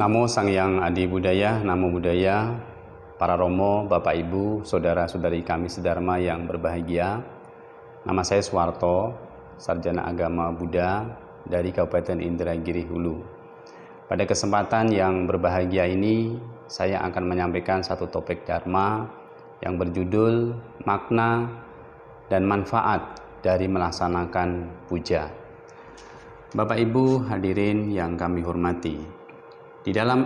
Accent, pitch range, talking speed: native, 90-110 Hz, 105 wpm